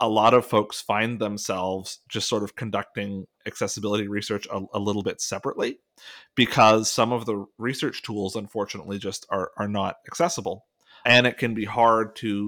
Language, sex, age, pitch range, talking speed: English, male, 30-49, 100-115 Hz, 170 wpm